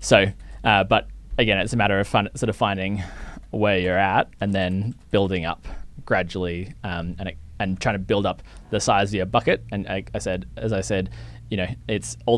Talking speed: 215 wpm